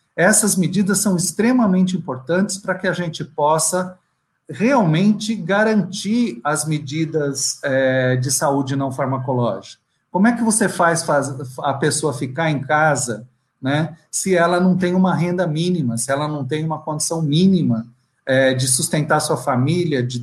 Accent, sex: Brazilian, male